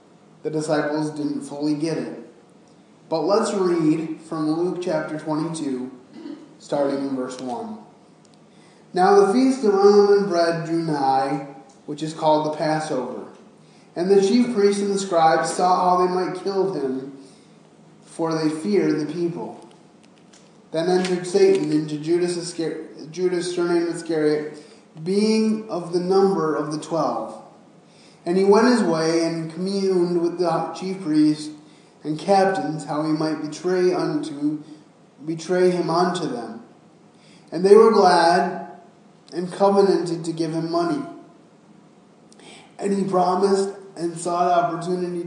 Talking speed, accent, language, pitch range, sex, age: 135 wpm, American, English, 155-190 Hz, male, 20-39